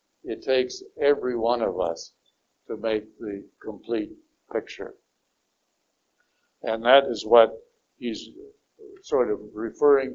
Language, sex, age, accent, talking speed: English, male, 60-79, American, 110 wpm